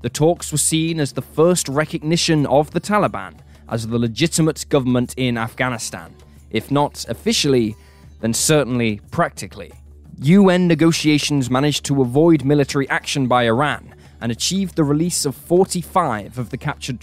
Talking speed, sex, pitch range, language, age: 145 wpm, male, 115-155 Hz, English, 10-29